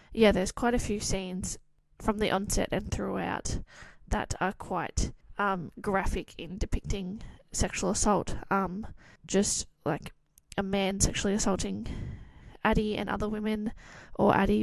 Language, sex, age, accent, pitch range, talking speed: English, female, 20-39, Australian, 190-215 Hz, 135 wpm